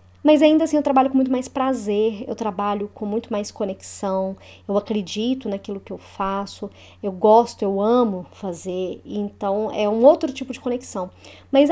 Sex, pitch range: male, 205-270 Hz